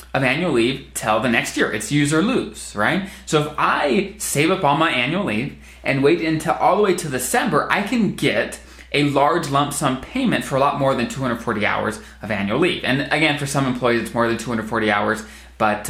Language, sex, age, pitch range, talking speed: English, male, 20-39, 110-150 Hz, 220 wpm